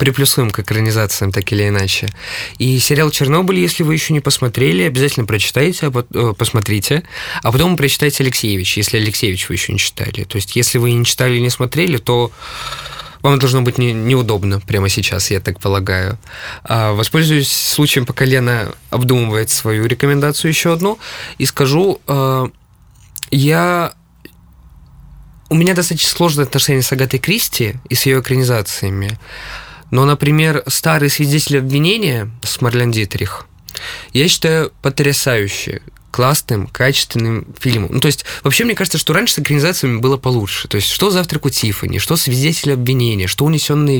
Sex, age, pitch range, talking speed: male, 20-39, 110-145 Hz, 145 wpm